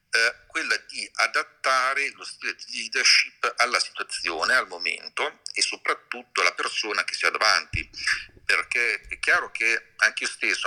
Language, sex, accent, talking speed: Italian, male, native, 145 wpm